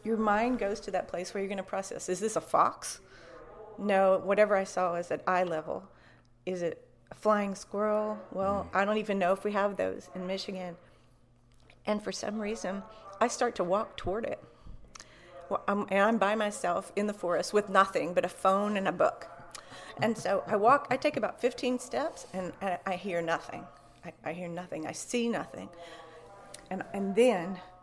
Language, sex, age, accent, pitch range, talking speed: English, female, 40-59, American, 175-210 Hz, 190 wpm